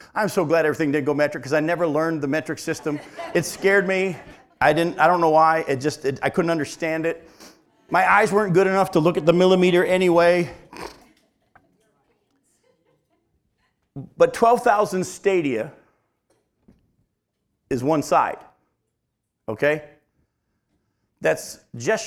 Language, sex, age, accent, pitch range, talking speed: English, male, 50-69, American, 150-200 Hz, 135 wpm